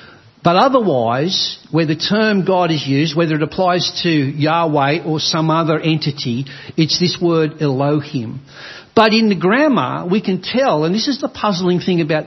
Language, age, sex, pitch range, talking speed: English, 60-79, male, 150-200 Hz, 170 wpm